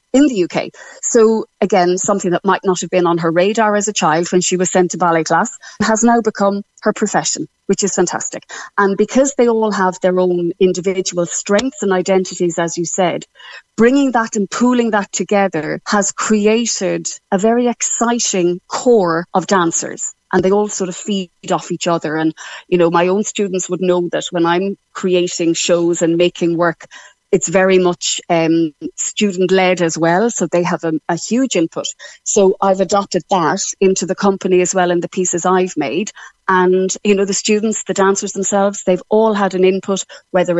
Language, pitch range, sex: English, 175-215 Hz, female